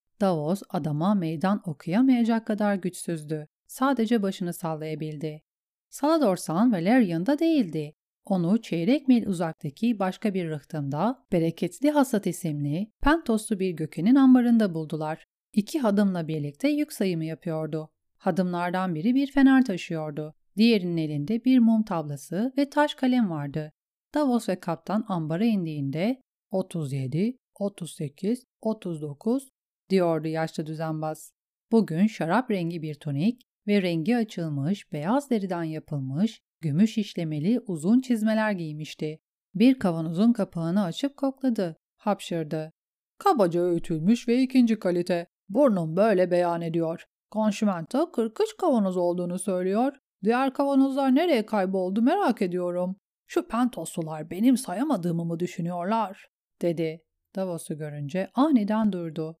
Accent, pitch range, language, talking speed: native, 165-235 Hz, Turkish, 115 wpm